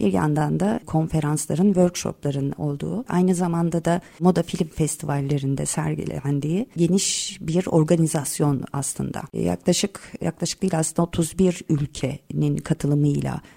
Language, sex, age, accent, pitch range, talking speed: Turkish, female, 50-69, native, 150-185 Hz, 100 wpm